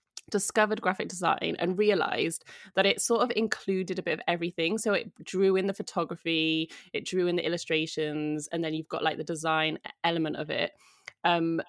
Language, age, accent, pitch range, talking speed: English, 20-39, British, 160-195 Hz, 185 wpm